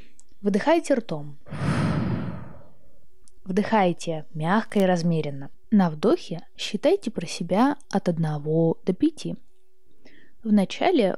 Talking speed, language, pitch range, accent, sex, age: 85 wpm, Russian, 170-235 Hz, native, female, 20-39